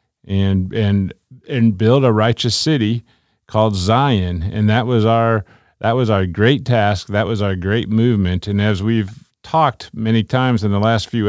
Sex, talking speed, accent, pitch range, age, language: male, 175 wpm, American, 100-125 Hz, 50-69, English